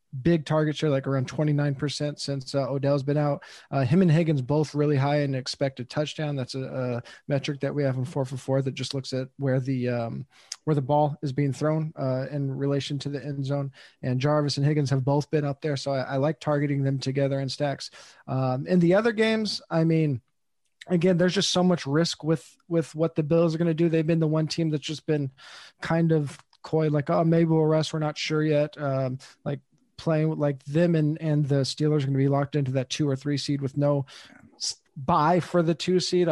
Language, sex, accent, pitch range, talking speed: English, male, American, 140-165 Hz, 235 wpm